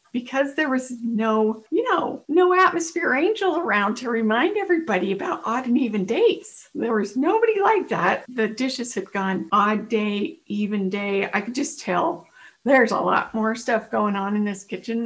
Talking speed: 180 wpm